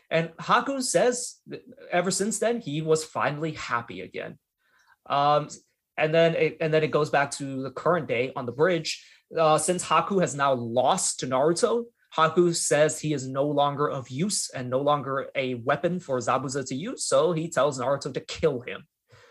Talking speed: 175 wpm